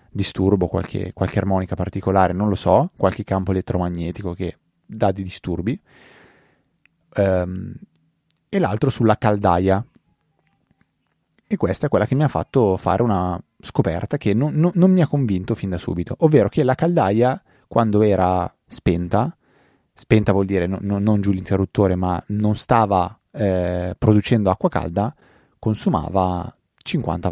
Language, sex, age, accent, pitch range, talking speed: Italian, male, 30-49, native, 95-120 Hz, 140 wpm